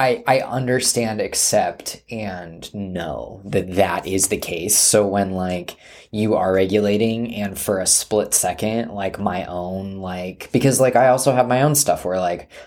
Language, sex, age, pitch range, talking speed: English, male, 20-39, 90-110 Hz, 170 wpm